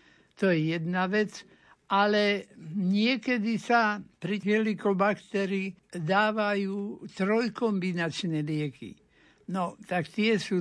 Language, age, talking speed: Slovak, 60-79, 95 wpm